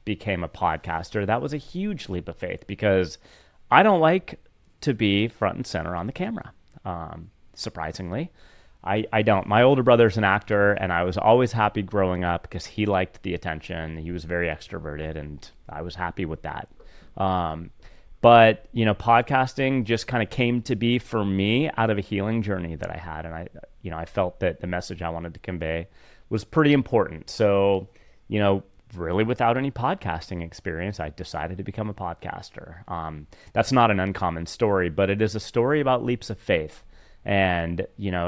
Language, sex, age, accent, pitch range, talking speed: English, male, 30-49, American, 90-120 Hz, 195 wpm